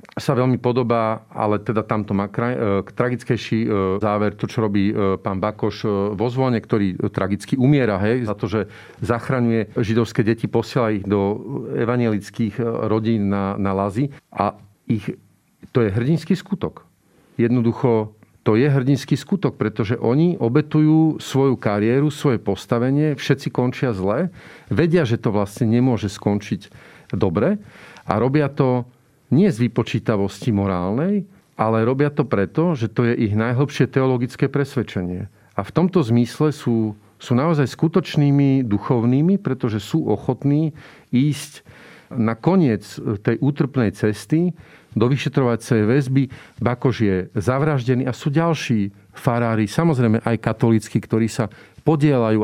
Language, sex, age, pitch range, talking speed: Slovak, male, 40-59, 110-140 Hz, 130 wpm